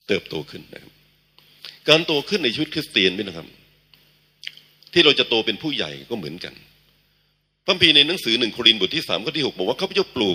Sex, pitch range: male, 115-160 Hz